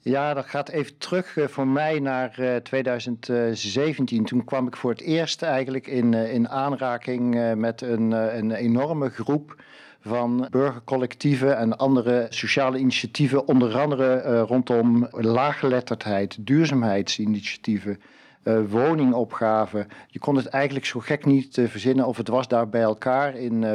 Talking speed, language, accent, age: 130 wpm, Dutch, Dutch, 50-69